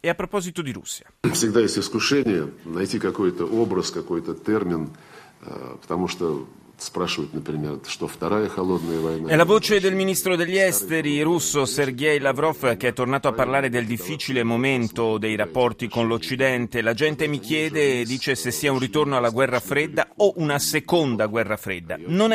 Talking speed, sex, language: 125 wpm, male, Italian